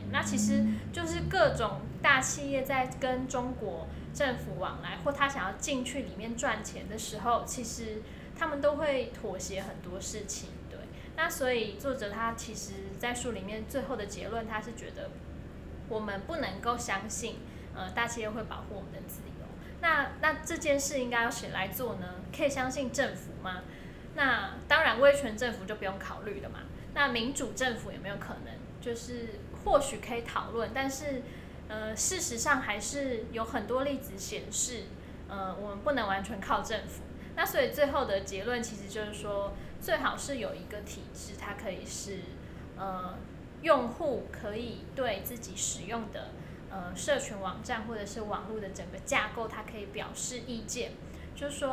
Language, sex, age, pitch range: Chinese, female, 10-29, 210-270 Hz